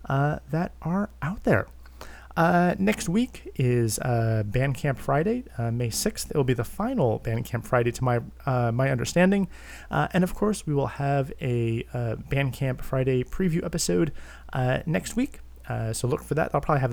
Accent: American